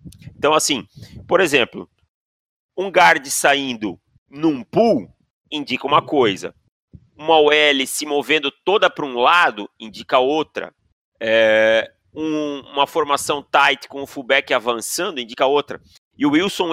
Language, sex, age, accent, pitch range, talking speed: Portuguese, male, 30-49, Brazilian, 120-165 Hz, 120 wpm